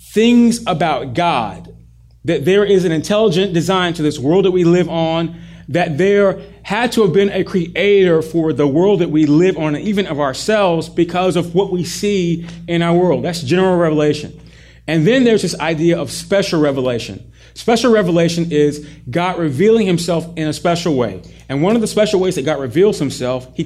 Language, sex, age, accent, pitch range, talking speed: English, male, 30-49, American, 145-180 Hz, 190 wpm